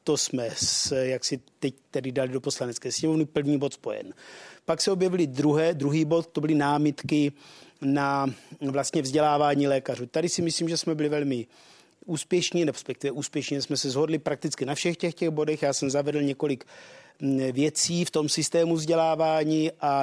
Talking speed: 170 wpm